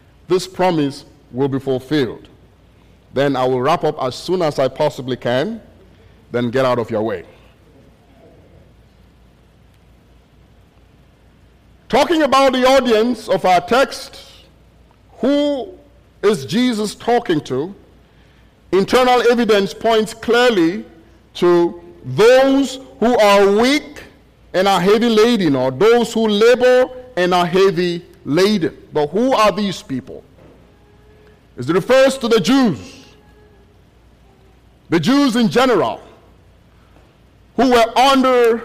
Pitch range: 175-240 Hz